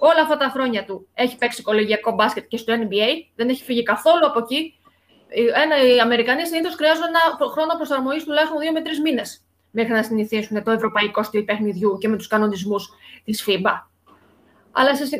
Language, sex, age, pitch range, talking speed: Greek, female, 20-39, 230-325 Hz, 175 wpm